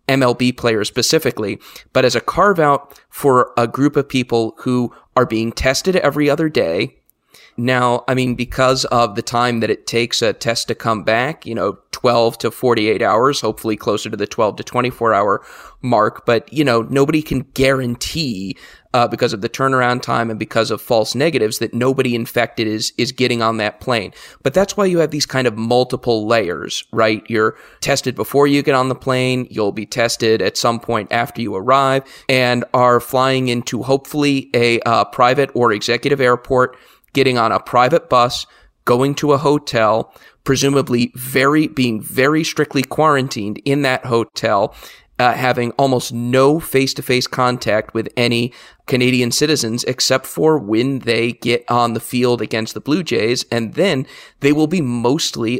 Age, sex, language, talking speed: 30-49, male, English, 175 wpm